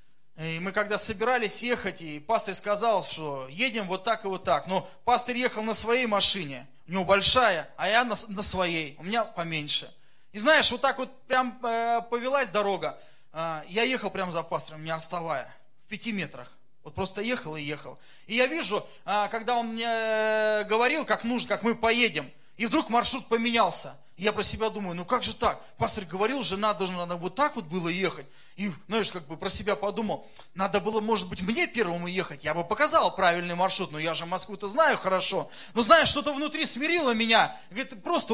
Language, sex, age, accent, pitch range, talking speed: Russian, male, 20-39, native, 180-245 Hz, 190 wpm